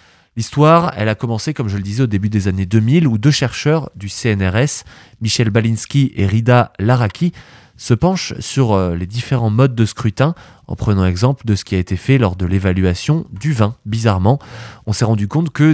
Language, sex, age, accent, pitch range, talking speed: French, male, 20-39, French, 100-130 Hz, 195 wpm